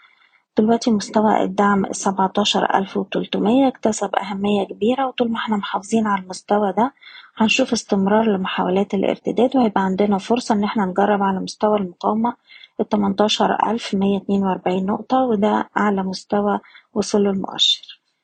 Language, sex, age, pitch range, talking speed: Arabic, female, 20-39, 195-225 Hz, 110 wpm